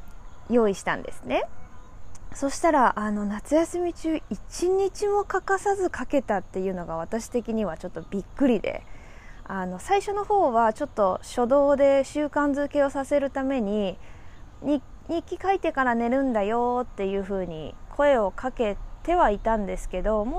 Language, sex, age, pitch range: Japanese, female, 20-39, 195-285 Hz